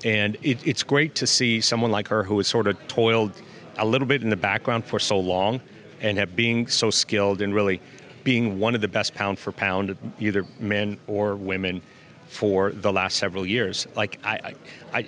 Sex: male